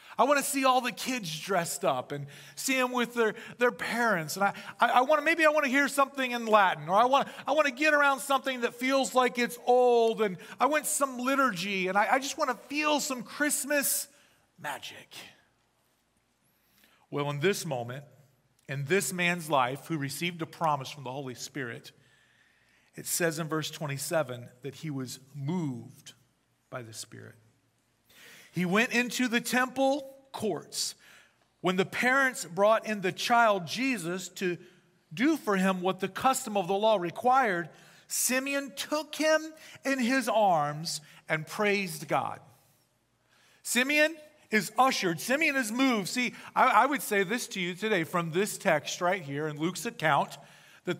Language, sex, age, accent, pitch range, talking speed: English, male, 40-59, American, 160-255 Hz, 170 wpm